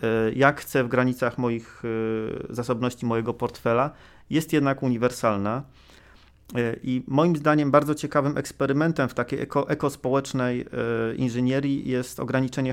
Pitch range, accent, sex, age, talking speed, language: 125-145 Hz, native, male, 40-59, 110 wpm, Polish